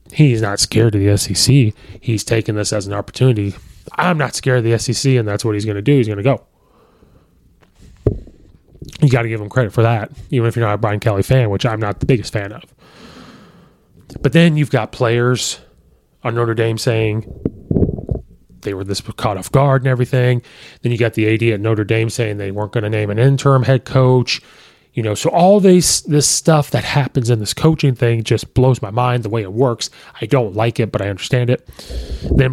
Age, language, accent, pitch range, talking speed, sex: 20-39, English, American, 105-135 Hz, 215 wpm, male